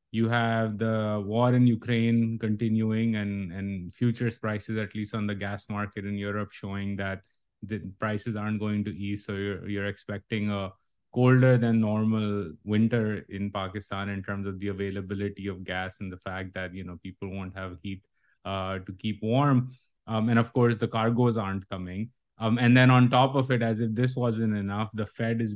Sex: male